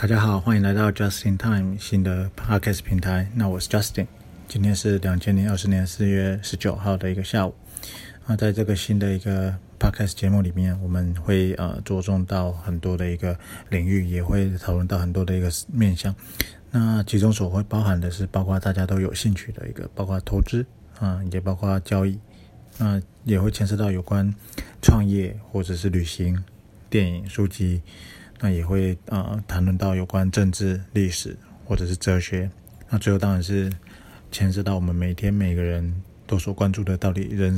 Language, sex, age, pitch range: Chinese, male, 20-39, 95-105 Hz